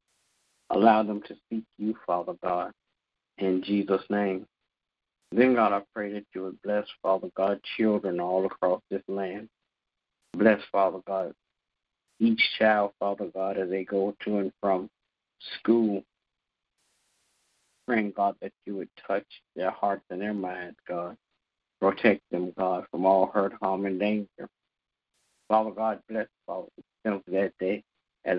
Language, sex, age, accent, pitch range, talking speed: English, male, 50-69, American, 95-105 Hz, 145 wpm